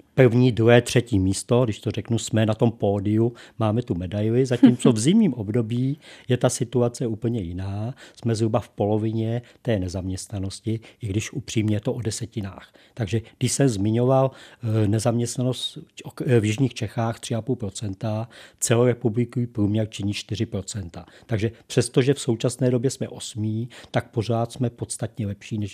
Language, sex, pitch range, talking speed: Czech, male, 105-120 Hz, 145 wpm